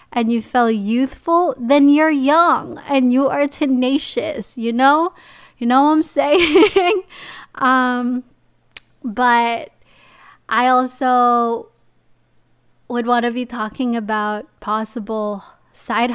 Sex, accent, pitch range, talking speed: female, American, 210-240 Hz, 110 wpm